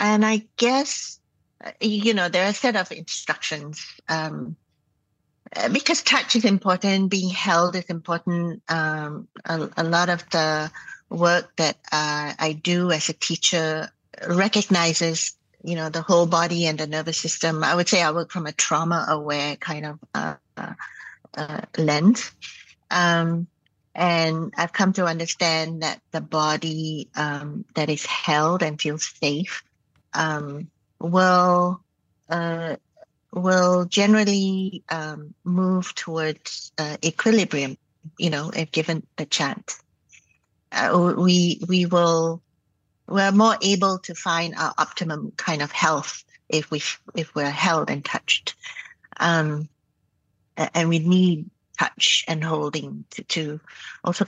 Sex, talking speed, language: female, 135 wpm, English